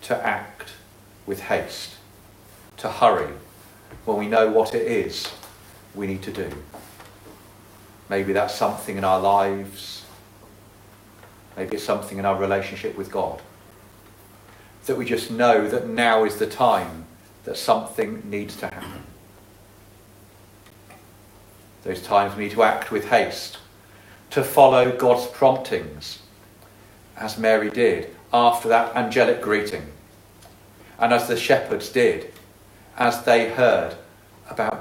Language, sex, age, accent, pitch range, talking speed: English, male, 40-59, British, 100-115 Hz, 125 wpm